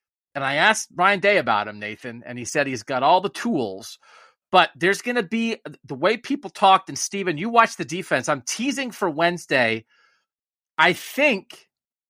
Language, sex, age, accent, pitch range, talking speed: English, male, 40-59, American, 125-195 Hz, 185 wpm